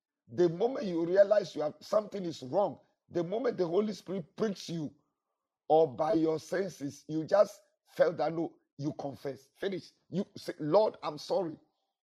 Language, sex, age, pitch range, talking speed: English, male, 50-69, 150-195 Hz, 165 wpm